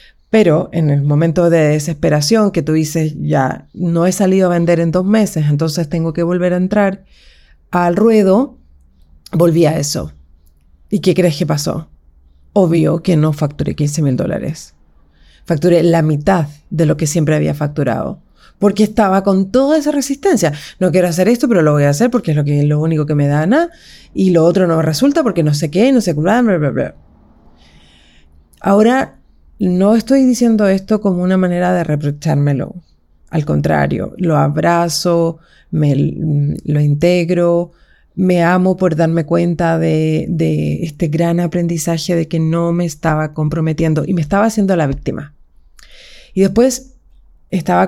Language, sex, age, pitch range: Spanish, female, 30-49, 150-185 Hz